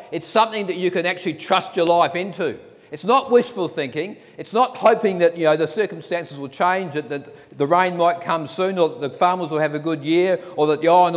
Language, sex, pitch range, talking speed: English, male, 150-200 Hz, 235 wpm